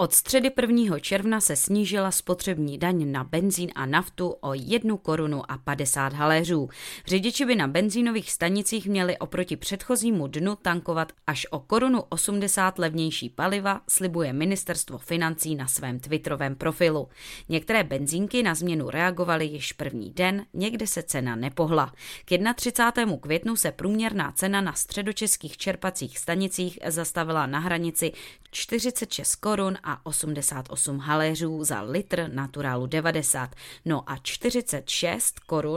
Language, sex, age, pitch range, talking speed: Czech, female, 20-39, 150-200 Hz, 135 wpm